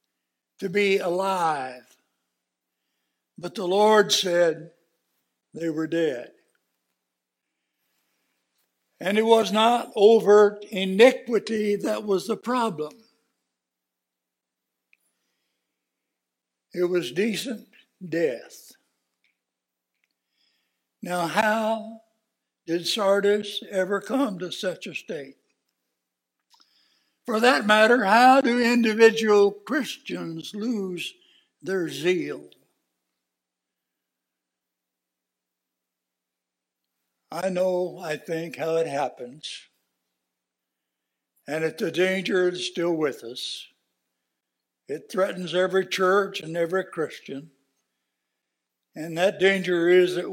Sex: male